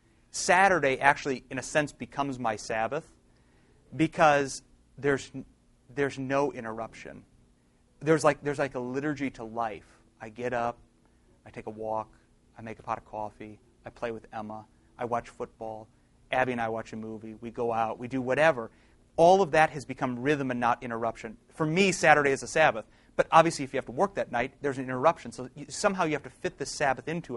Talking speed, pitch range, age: 195 wpm, 120-155 Hz, 30-49